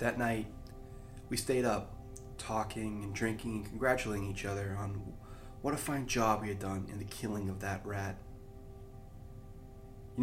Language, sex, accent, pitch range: English, male, American, 100-110 Hz